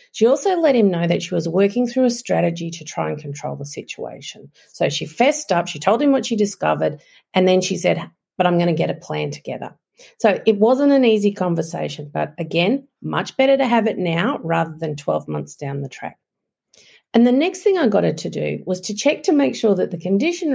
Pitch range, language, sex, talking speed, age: 170-245 Hz, English, female, 230 wpm, 50-69